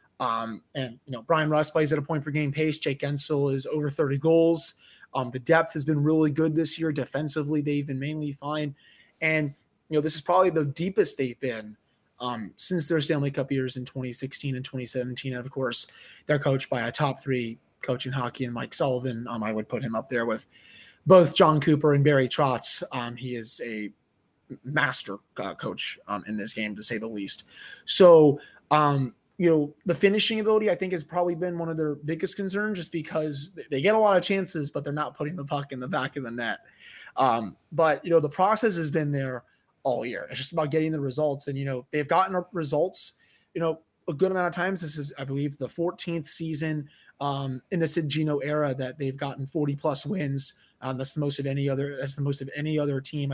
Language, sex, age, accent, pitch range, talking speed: English, male, 20-39, American, 130-160 Hz, 220 wpm